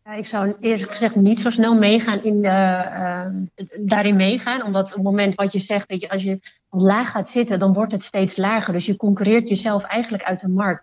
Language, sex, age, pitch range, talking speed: Dutch, female, 30-49, 185-205 Hz, 225 wpm